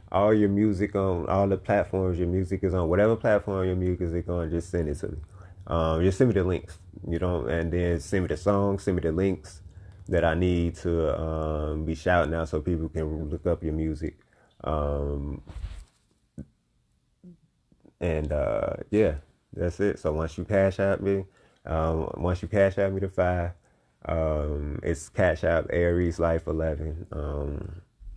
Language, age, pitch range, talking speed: English, 30-49, 80-95 Hz, 175 wpm